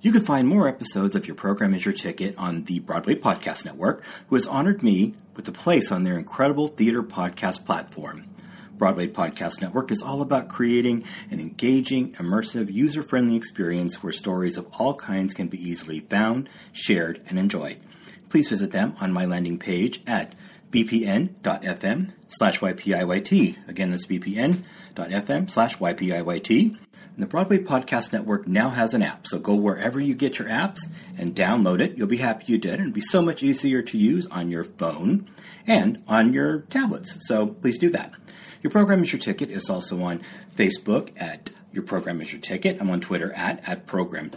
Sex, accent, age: male, American, 40-59